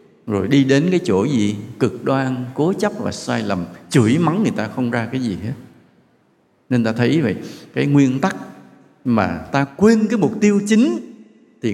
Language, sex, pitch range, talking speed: English, male, 120-190 Hz, 190 wpm